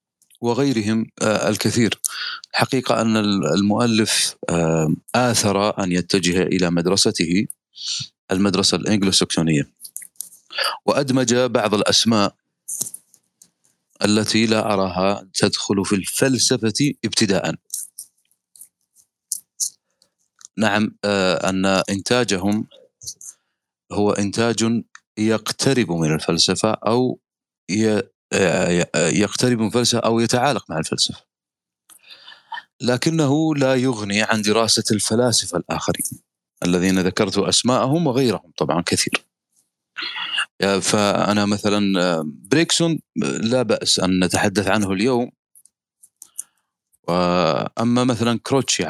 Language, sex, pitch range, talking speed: Arabic, male, 95-120 Hz, 75 wpm